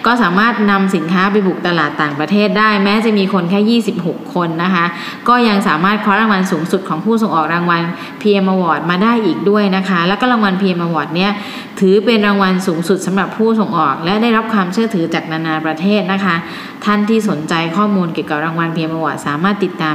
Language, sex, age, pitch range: Thai, female, 20-39, 170-210 Hz